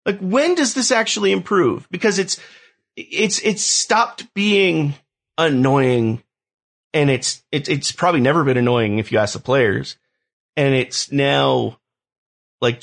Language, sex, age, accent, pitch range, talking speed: English, male, 30-49, American, 120-165 Hz, 140 wpm